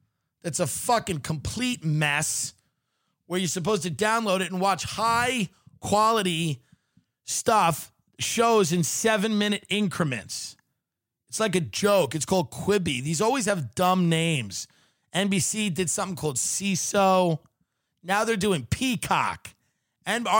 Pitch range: 140-220 Hz